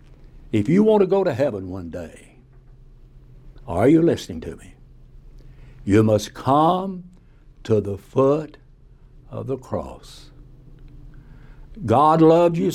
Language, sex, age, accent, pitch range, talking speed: English, male, 60-79, American, 120-160 Hz, 120 wpm